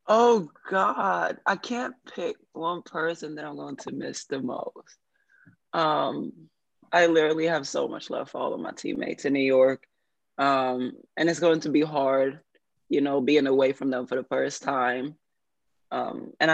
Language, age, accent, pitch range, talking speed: English, 20-39, American, 135-165 Hz, 175 wpm